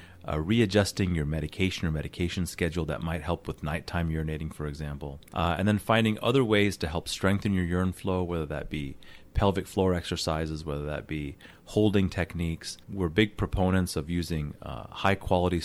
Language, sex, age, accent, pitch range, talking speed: English, male, 30-49, American, 80-95 Hz, 175 wpm